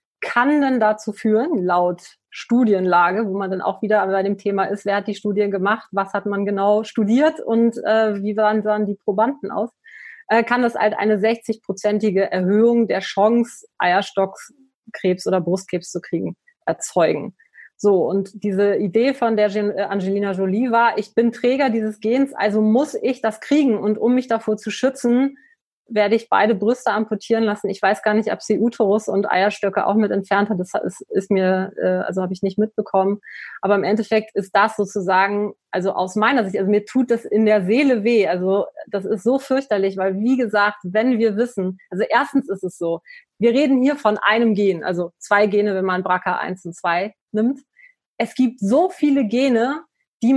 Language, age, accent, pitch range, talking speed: German, 30-49, German, 200-235 Hz, 185 wpm